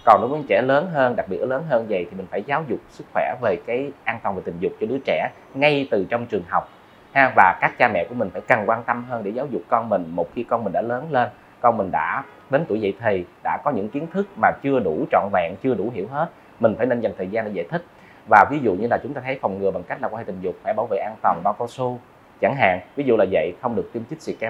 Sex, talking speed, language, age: male, 305 wpm, Vietnamese, 20-39